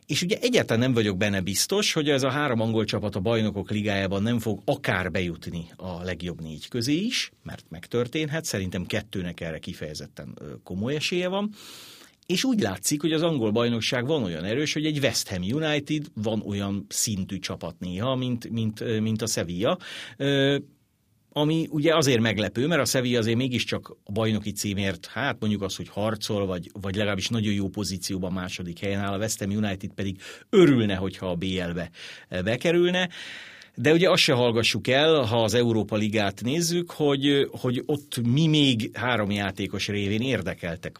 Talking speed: 165 wpm